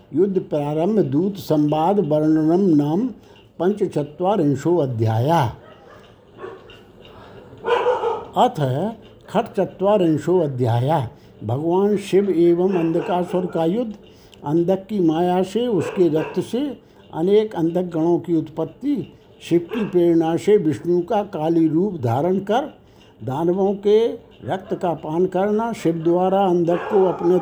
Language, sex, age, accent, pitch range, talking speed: Hindi, male, 60-79, native, 165-210 Hz, 115 wpm